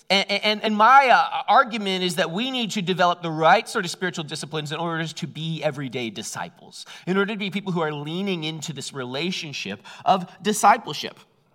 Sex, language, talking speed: male, English, 190 wpm